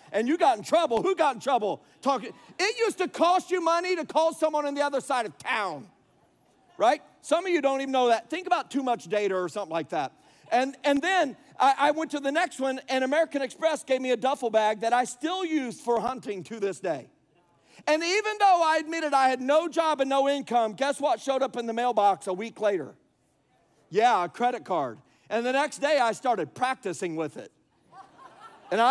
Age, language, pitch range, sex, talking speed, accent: 50-69, English, 245-300 Hz, male, 220 wpm, American